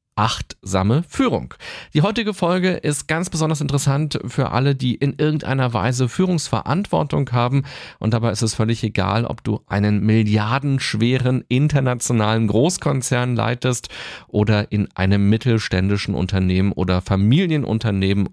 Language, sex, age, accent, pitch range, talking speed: German, male, 40-59, German, 105-140 Hz, 120 wpm